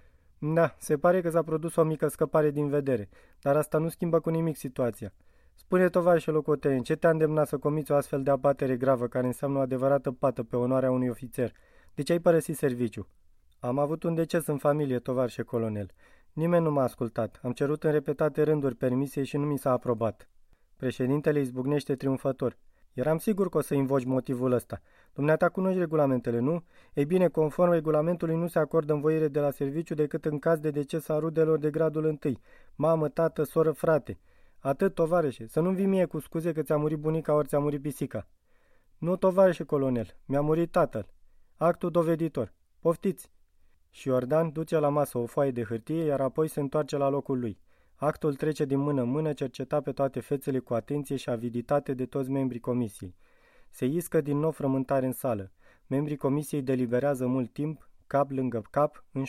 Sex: male